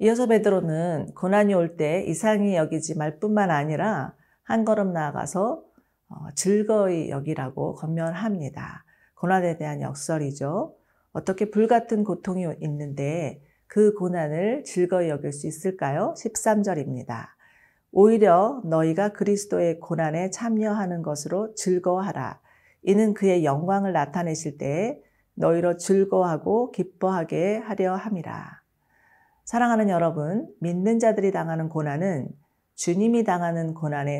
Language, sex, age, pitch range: Korean, female, 40-59, 155-205 Hz